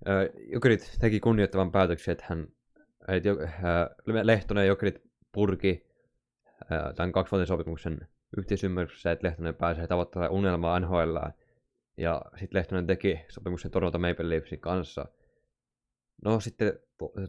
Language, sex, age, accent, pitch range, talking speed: Finnish, male, 20-39, native, 85-100 Hz, 110 wpm